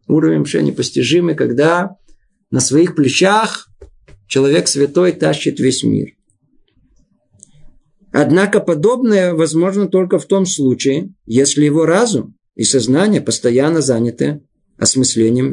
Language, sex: Russian, male